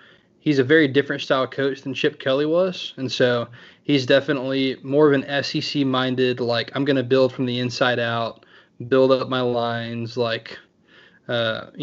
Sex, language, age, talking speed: male, English, 20-39, 165 wpm